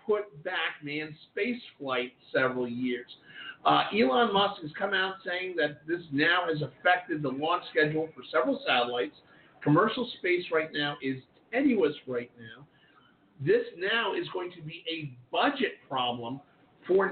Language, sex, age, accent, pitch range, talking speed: English, male, 50-69, American, 140-180 Hz, 150 wpm